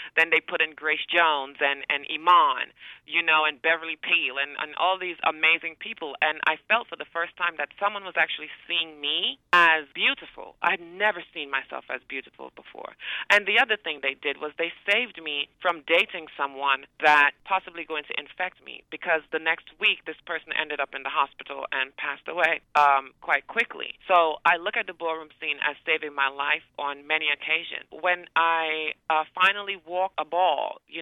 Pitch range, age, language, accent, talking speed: 150-170 Hz, 30-49, English, American, 195 wpm